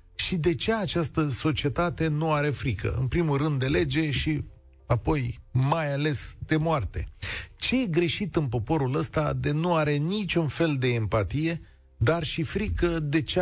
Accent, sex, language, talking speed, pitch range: native, male, Romanian, 165 wpm, 100-150 Hz